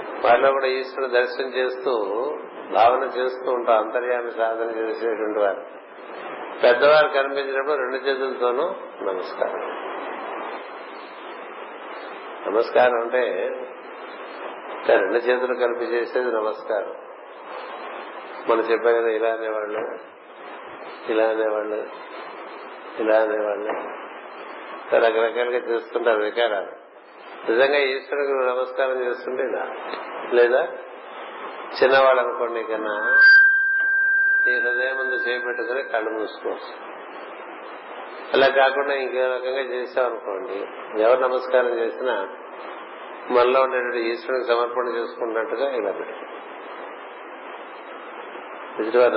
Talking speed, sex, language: 80 wpm, male, Telugu